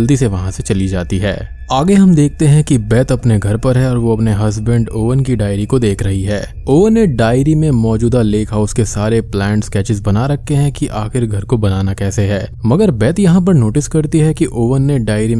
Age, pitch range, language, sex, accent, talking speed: 20-39, 105-130 Hz, Hindi, male, native, 235 wpm